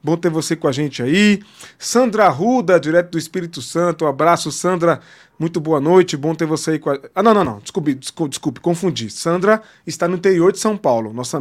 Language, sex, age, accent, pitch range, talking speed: Portuguese, male, 20-39, Brazilian, 160-190 Hz, 210 wpm